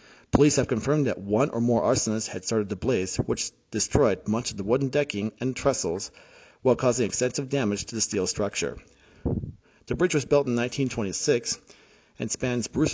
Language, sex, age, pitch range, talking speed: English, male, 40-59, 100-130 Hz, 160 wpm